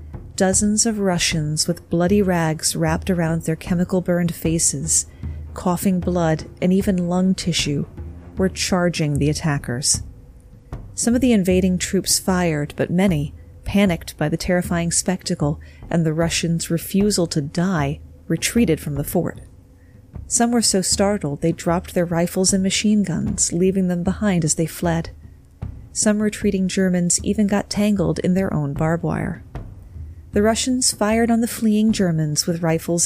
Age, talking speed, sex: 40-59, 145 wpm, female